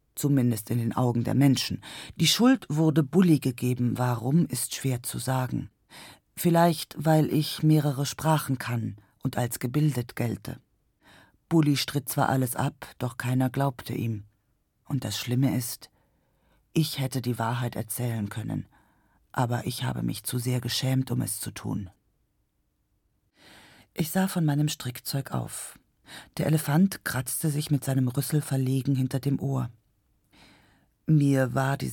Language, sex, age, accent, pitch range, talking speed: German, female, 40-59, German, 120-145 Hz, 145 wpm